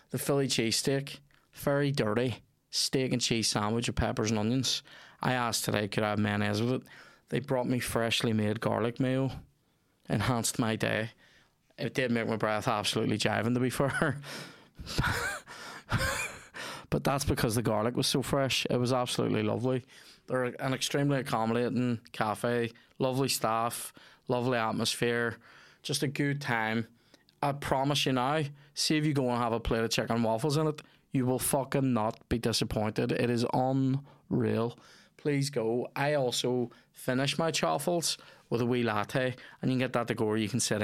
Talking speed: 170 wpm